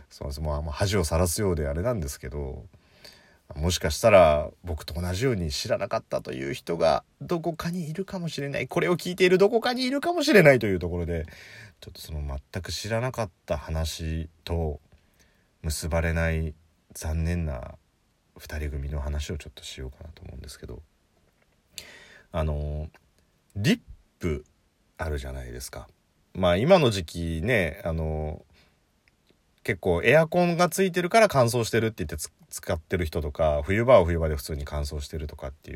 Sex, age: male, 30-49